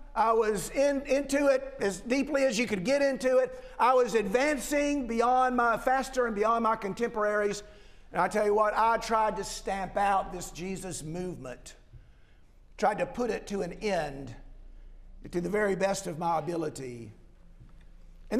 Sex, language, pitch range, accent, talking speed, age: male, English, 205-275 Hz, American, 165 wpm, 50-69